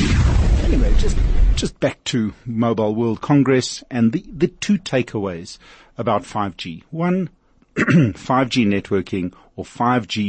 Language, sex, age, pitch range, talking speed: English, male, 50-69, 95-120 Hz, 115 wpm